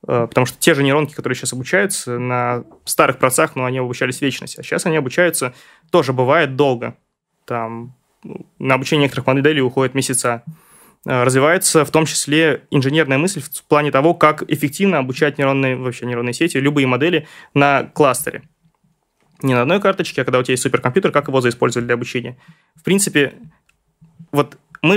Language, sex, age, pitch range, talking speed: Russian, male, 20-39, 130-160 Hz, 165 wpm